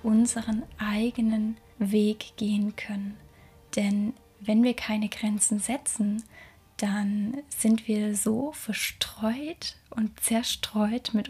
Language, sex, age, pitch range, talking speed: German, female, 10-29, 210-230 Hz, 100 wpm